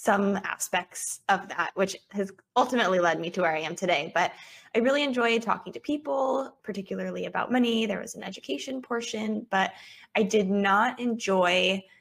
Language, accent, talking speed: English, American, 170 wpm